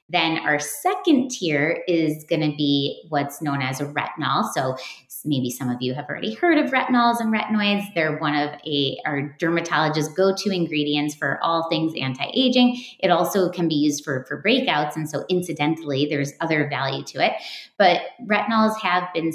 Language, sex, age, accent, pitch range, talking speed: English, female, 30-49, American, 150-205 Hz, 175 wpm